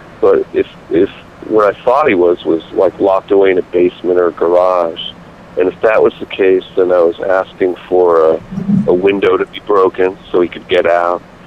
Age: 40-59